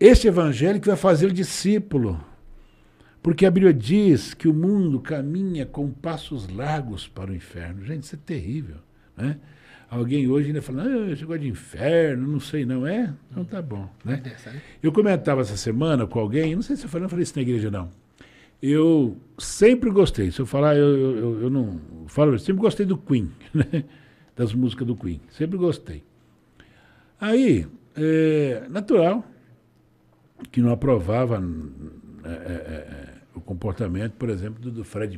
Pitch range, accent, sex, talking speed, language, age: 100-160 Hz, Brazilian, male, 165 wpm, Portuguese, 60-79